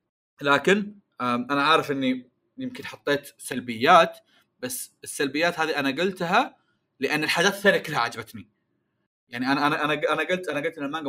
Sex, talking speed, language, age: male, 145 wpm, Arabic, 30-49